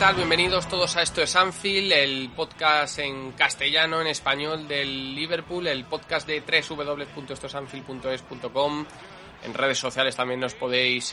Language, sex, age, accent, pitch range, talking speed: Spanish, male, 20-39, Spanish, 125-150 Hz, 130 wpm